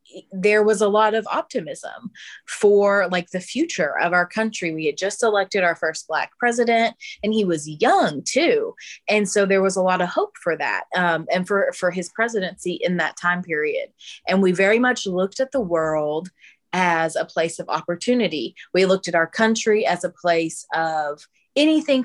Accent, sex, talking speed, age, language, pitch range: American, female, 190 wpm, 30-49, English, 170-215 Hz